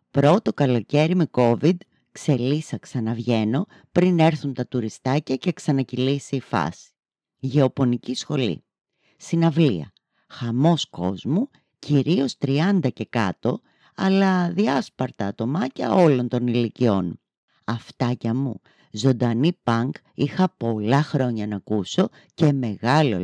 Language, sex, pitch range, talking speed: Greek, female, 120-175 Hz, 105 wpm